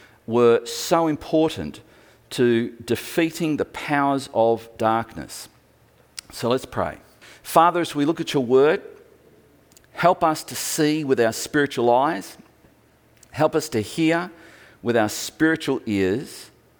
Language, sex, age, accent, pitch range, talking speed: English, male, 50-69, Australian, 110-155 Hz, 125 wpm